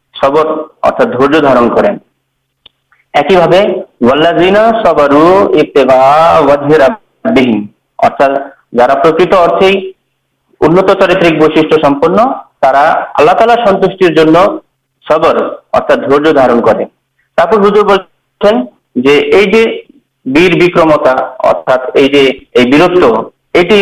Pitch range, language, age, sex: 145-190 Hz, Urdu, 50-69, male